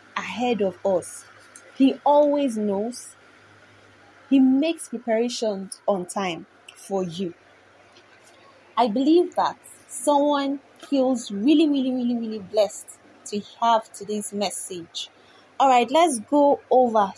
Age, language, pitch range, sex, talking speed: 20-39, English, 200-265 Hz, female, 110 wpm